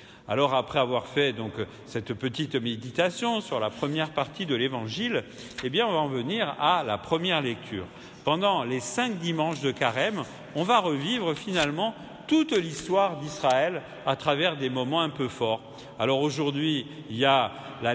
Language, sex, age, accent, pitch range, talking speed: French, male, 50-69, French, 130-175 Hz, 155 wpm